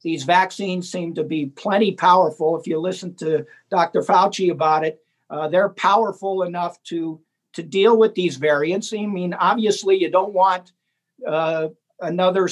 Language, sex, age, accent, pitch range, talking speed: English, male, 50-69, American, 170-205 Hz, 160 wpm